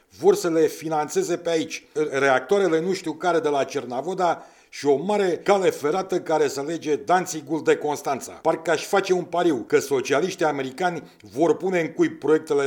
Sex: male